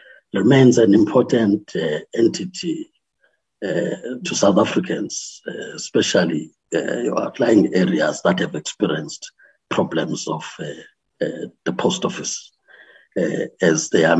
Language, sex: English, male